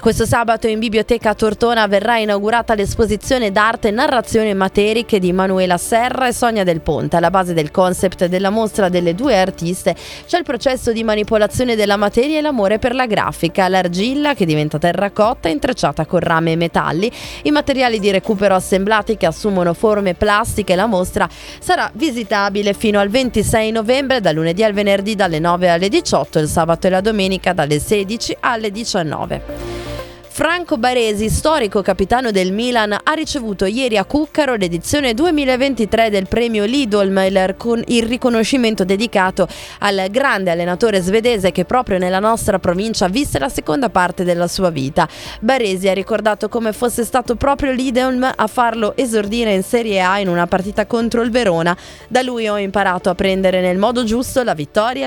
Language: Italian